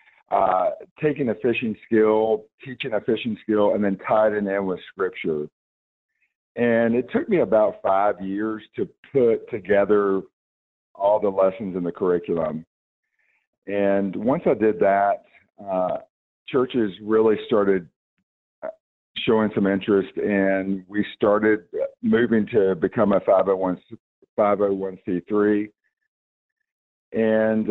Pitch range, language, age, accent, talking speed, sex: 95-110 Hz, English, 50-69, American, 115 wpm, male